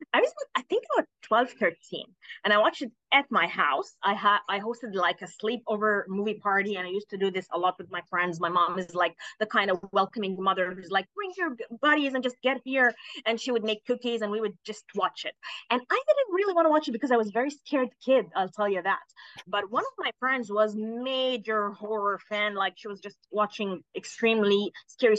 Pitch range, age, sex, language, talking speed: 200-280 Hz, 20-39, female, English, 230 wpm